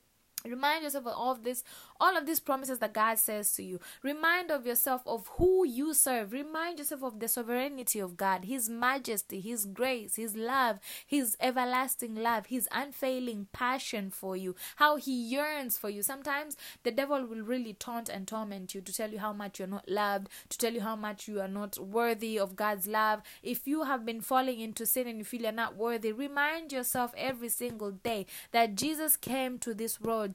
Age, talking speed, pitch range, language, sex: 20-39, 195 wpm, 215-270 Hz, English, female